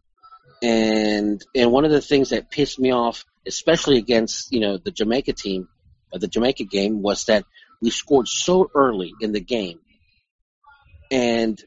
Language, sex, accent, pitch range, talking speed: English, male, American, 110-140 Hz, 160 wpm